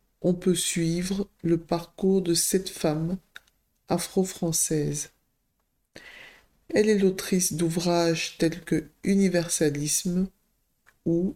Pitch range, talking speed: 155-180 Hz, 90 wpm